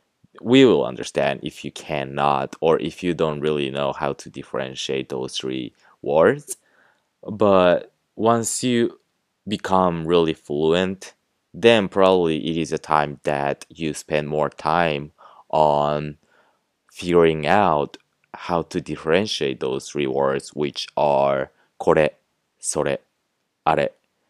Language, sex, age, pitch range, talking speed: English, male, 20-39, 70-90 Hz, 120 wpm